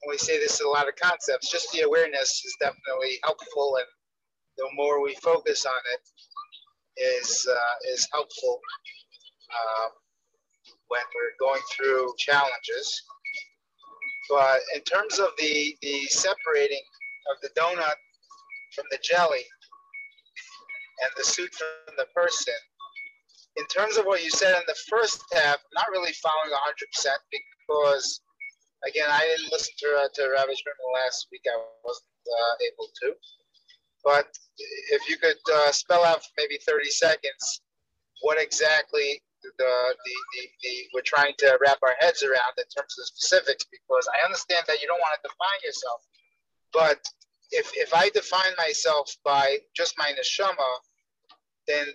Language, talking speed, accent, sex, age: English, 155 wpm, American, male, 30-49